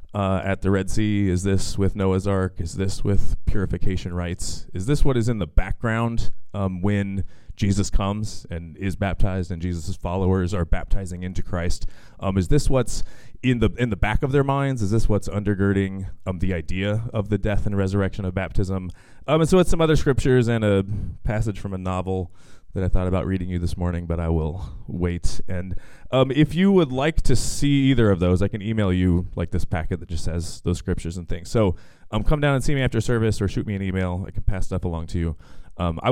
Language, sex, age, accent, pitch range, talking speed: English, male, 30-49, American, 90-110 Hz, 225 wpm